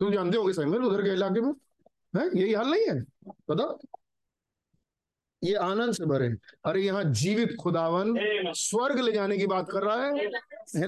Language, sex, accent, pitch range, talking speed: Hindi, male, native, 170-225 Hz, 155 wpm